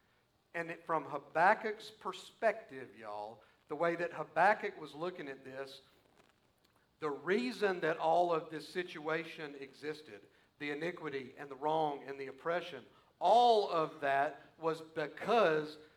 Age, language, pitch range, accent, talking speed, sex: 50-69, English, 150-185 Hz, American, 130 wpm, male